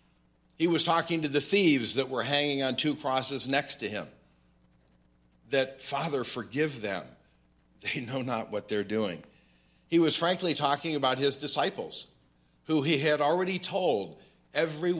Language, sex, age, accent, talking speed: English, male, 50-69, American, 150 wpm